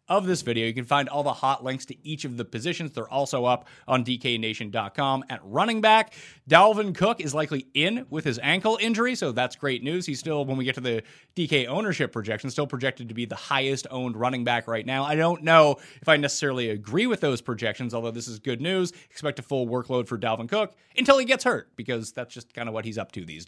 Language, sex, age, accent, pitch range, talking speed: English, male, 30-49, American, 120-155 Hz, 240 wpm